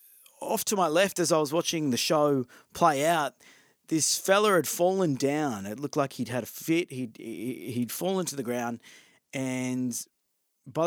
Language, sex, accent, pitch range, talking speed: English, male, Australian, 130-170 Hz, 175 wpm